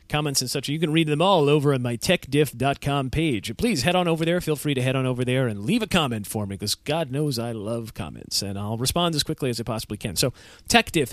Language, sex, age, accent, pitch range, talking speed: English, male, 40-59, American, 115-155 Hz, 260 wpm